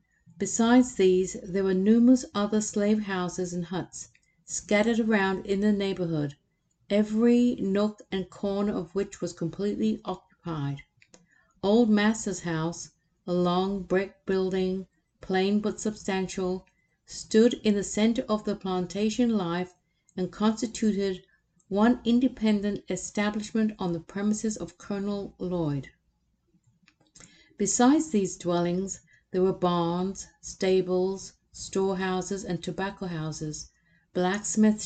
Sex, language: female, English